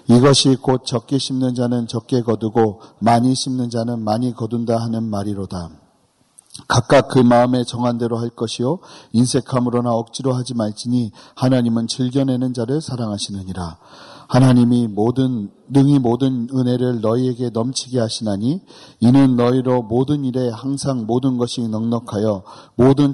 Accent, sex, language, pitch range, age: native, male, Korean, 115-130 Hz, 40-59